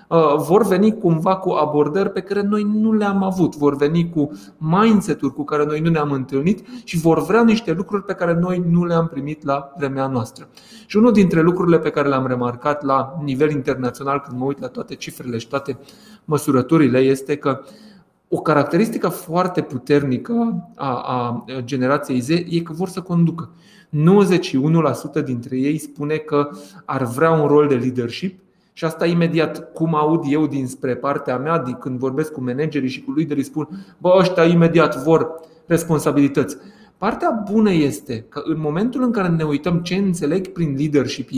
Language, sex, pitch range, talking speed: Romanian, male, 140-185 Hz, 170 wpm